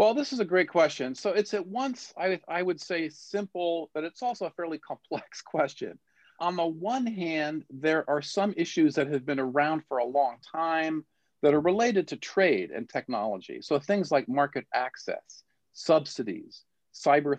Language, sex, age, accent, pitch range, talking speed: English, male, 40-59, American, 125-175 Hz, 180 wpm